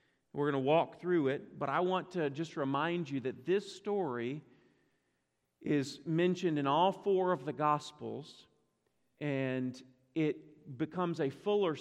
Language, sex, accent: English, male, American